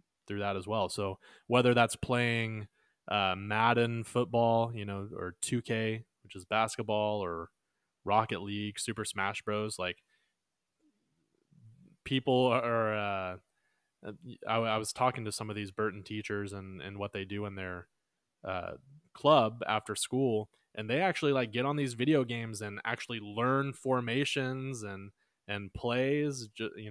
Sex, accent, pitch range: male, American, 105-125 Hz